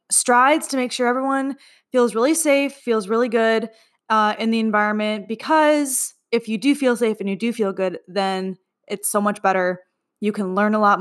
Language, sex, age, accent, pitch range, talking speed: English, female, 20-39, American, 195-250 Hz, 195 wpm